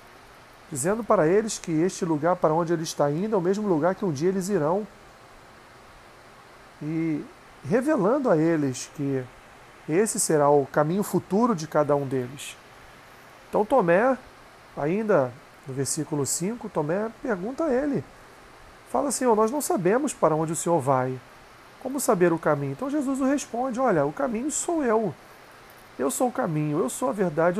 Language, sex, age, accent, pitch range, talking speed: Portuguese, male, 40-59, Brazilian, 160-215 Hz, 165 wpm